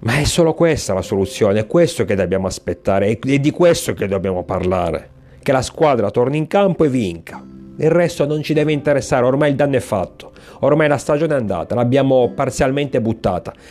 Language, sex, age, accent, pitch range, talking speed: Italian, male, 40-59, native, 100-130 Hz, 195 wpm